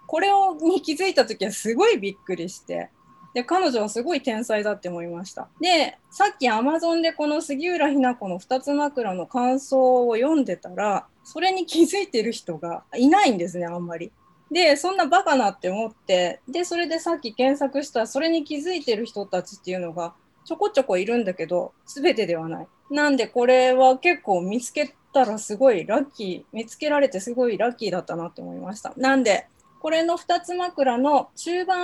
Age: 20-39